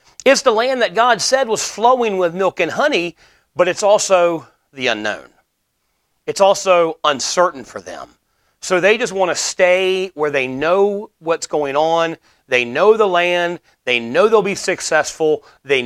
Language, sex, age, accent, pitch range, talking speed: English, male, 40-59, American, 145-195 Hz, 165 wpm